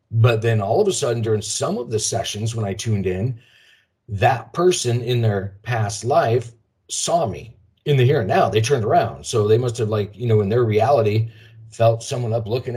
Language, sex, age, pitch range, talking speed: English, male, 40-59, 105-120 Hz, 210 wpm